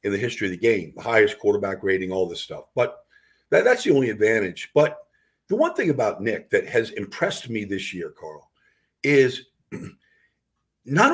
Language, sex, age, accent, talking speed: English, male, 50-69, American, 180 wpm